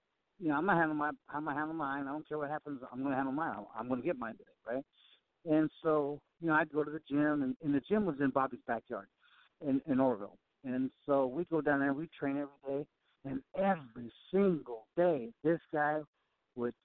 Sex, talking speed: male, 220 wpm